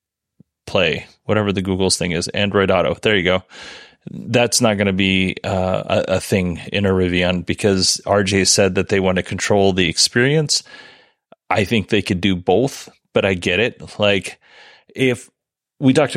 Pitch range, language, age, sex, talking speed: 95-110 Hz, English, 30-49, male, 170 wpm